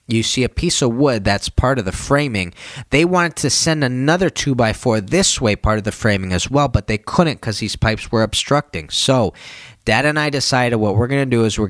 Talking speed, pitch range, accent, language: 240 wpm, 110-145 Hz, American, English